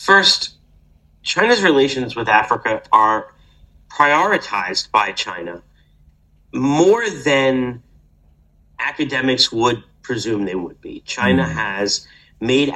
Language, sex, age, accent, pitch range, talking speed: English, male, 40-59, American, 100-125 Hz, 95 wpm